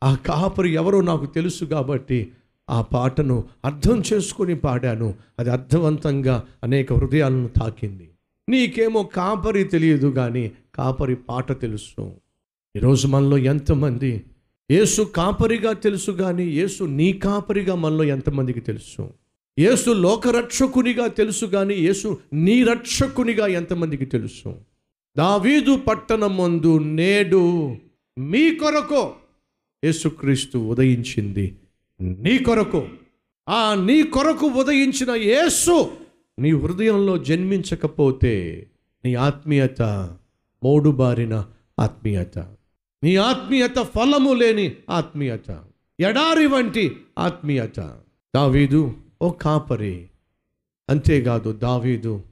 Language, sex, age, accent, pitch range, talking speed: Telugu, male, 50-69, native, 125-195 Hz, 90 wpm